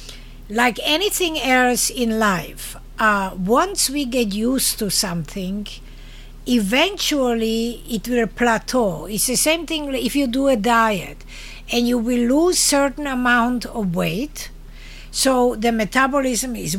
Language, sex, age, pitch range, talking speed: English, female, 60-79, 200-255 Hz, 130 wpm